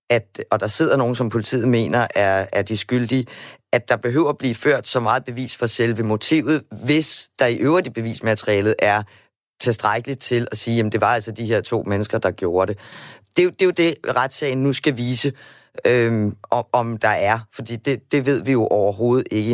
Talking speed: 205 wpm